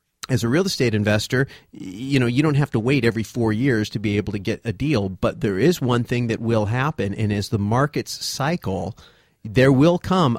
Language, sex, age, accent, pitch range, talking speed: English, male, 40-59, American, 110-135 Hz, 220 wpm